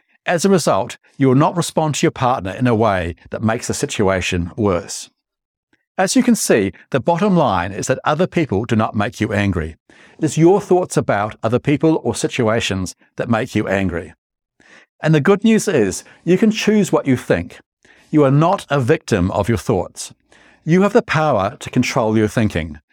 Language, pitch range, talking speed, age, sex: English, 105-160 Hz, 195 wpm, 60-79, male